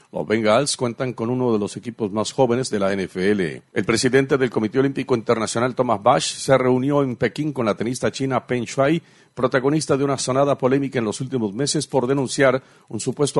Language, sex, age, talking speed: Spanish, male, 50-69, 195 wpm